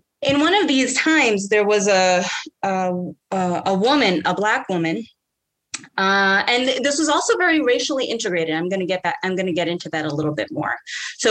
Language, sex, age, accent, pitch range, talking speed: English, female, 20-39, American, 175-235 Hz, 190 wpm